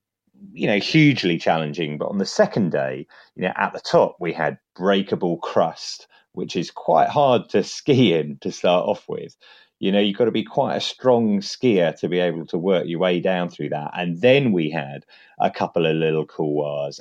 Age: 30-49